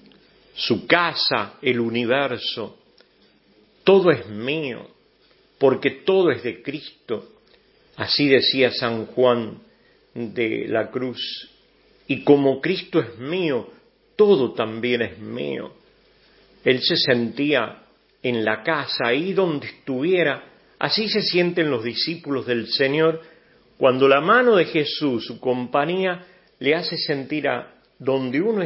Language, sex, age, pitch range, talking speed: English, male, 50-69, 120-180 Hz, 120 wpm